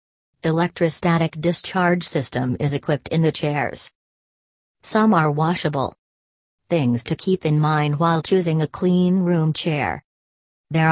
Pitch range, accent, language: 150-175 Hz, American, English